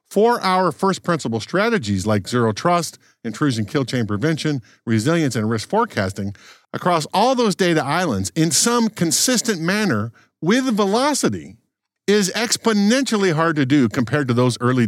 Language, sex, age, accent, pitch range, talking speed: English, male, 50-69, American, 120-190 Hz, 145 wpm